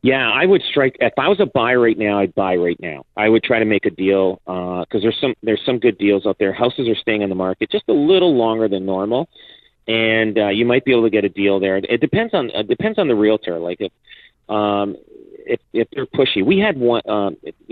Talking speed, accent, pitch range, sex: 255 wpm, American, 95-120 Hz, male